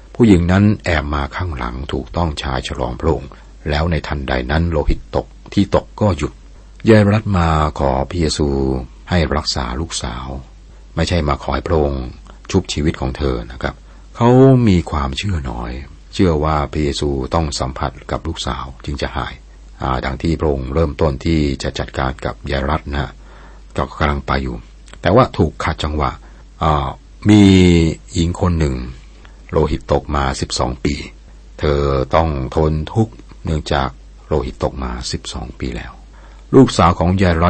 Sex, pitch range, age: male, 65-85 Hz, 60-79